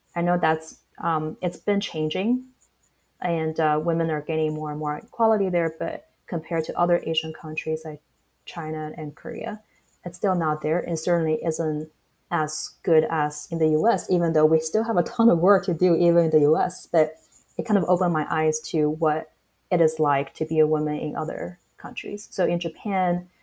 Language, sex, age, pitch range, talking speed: English, female, 20-39, 155-175 Hz, 195 wpm